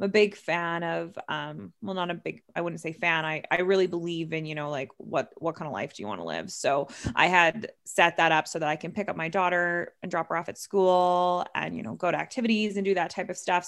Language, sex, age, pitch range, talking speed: English, female, 20-39, 165-195 Hz, 275 wpm